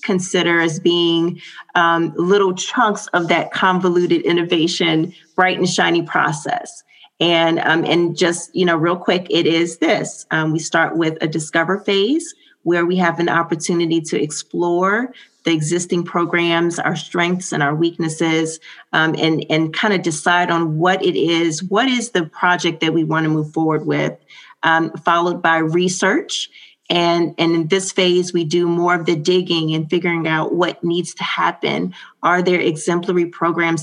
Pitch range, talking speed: 165-190 Hz, 165 wpm